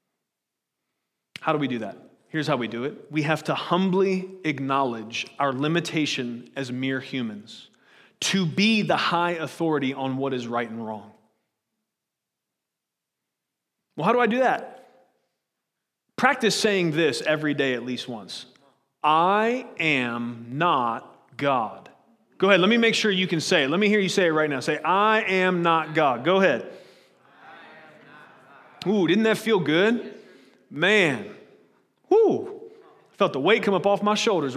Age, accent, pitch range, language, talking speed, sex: 30-49, American, 150-210 Hz, English, 155 wpm, male